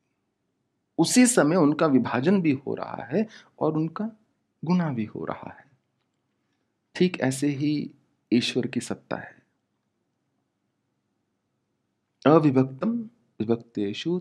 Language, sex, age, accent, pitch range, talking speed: English, male, 40-59, Indian, 115-165 Hz, 100 wpm